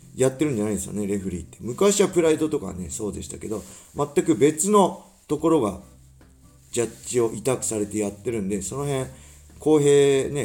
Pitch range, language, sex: 95-155 Hz, Japanese, male